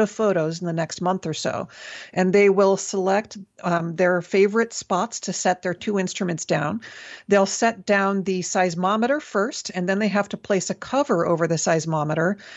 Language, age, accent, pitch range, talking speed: English, 40-59, American, 175-205 Hz, 185 wpm